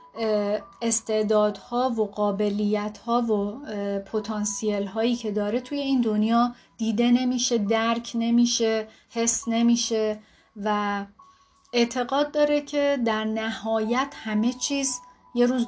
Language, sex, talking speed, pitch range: Persian, female, 105 wpm, 210-250 Hz